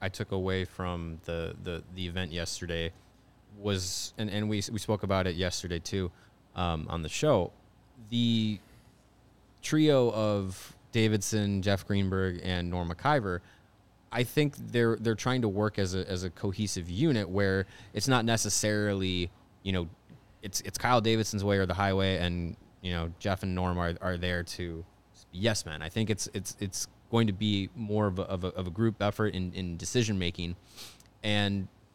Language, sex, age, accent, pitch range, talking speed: English, male, 20-39, American, 95-110 Hz, 175 wpm